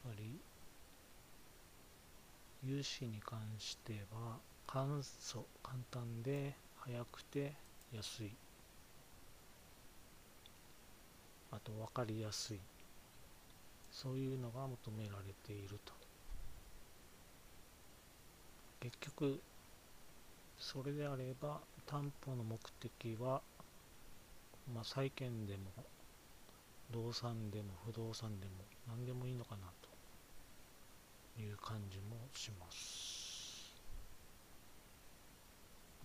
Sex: male